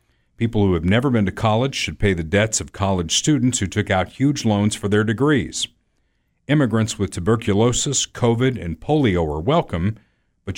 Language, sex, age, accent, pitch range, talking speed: English, male, 50-69, American, 90-120 Hz, 175 wpm